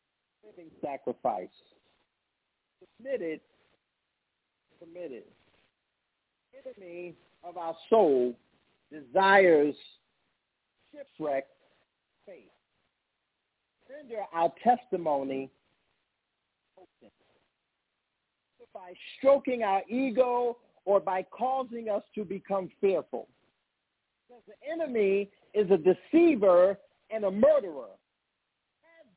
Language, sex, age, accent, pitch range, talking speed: English, male, 50-69, American, 190-265 Hz, 75 wpm